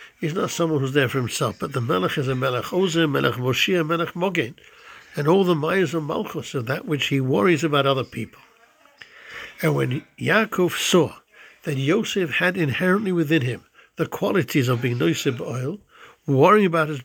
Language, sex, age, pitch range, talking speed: English, male, 60-79, 140-180 Hz, 185 wpm